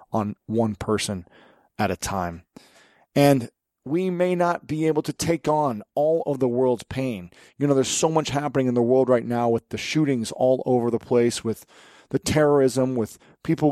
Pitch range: 120-165 Hz